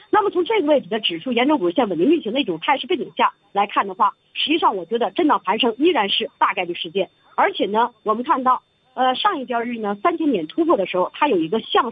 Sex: female